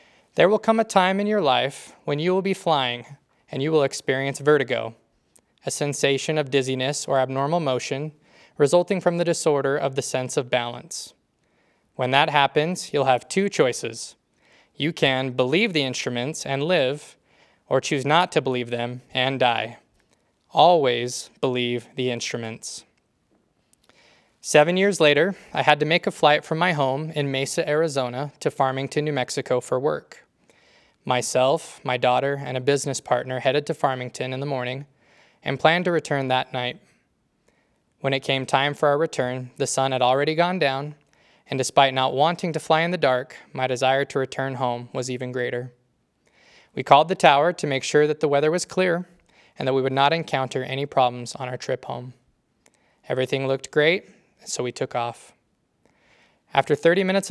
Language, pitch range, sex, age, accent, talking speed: English, 130-155 Hz, male, 20-39, American, 170 wpm